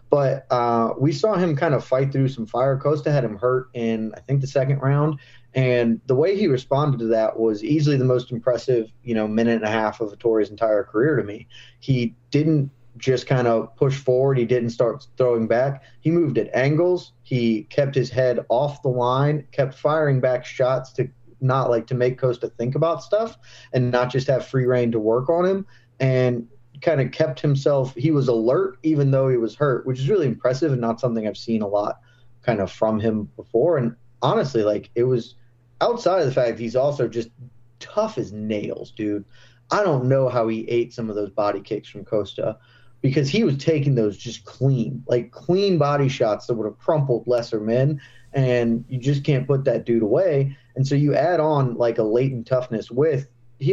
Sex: male